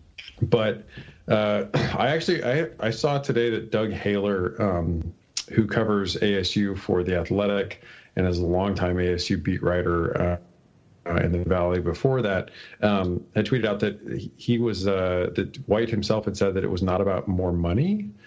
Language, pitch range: English, 90-110 Hz